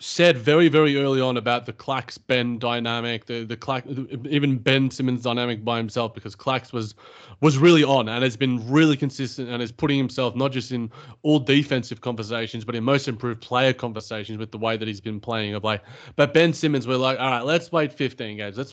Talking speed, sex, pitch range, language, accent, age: 210 wpm, male, 120-155 Hz, English, Australian, 30-49